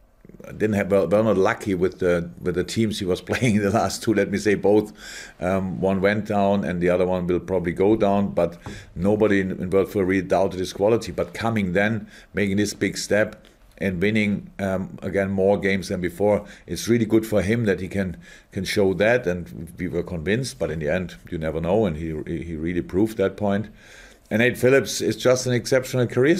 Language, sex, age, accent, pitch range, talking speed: English, male, 50-69, German, 95-110 Hz, 215 wpm